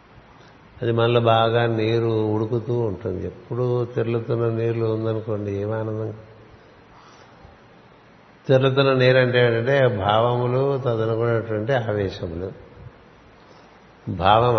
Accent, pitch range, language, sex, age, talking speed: native, 105-120 Hz, Telugu, male, 60-79, 80 wpm